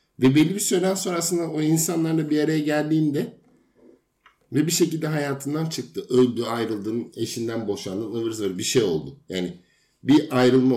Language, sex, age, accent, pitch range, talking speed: Turkish, male, 50-69, native, 110-140 Hz, 145 wpm